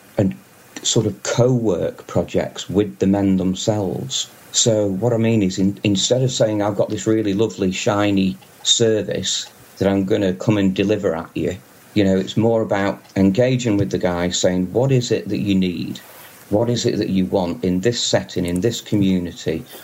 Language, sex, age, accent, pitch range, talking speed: English, male, 40-59, British, 95-110 Hz, 185 wpm